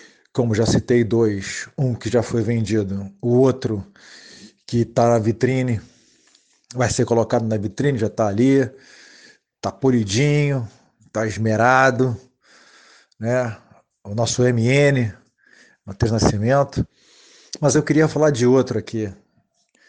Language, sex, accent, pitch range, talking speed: Portuguese, male, Brazilian, 115-150 Hz, 120 wpm